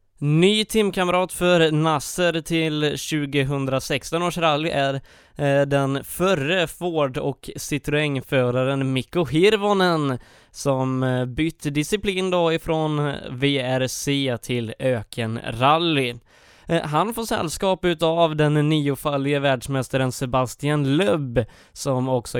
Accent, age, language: native, 20-39, Swedish